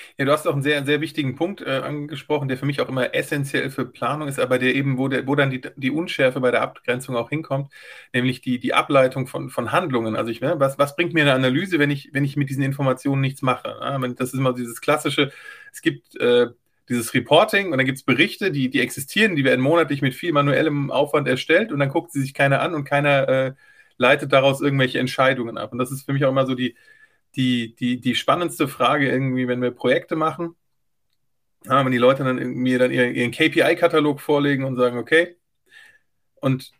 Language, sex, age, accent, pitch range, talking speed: German, male, 30-49, German, 130-150 Hz, 220 wpm